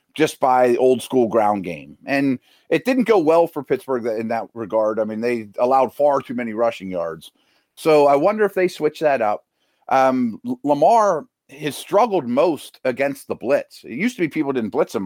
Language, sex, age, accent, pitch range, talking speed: English, male, 30-49, American, 120-155 Hz, 195 wpm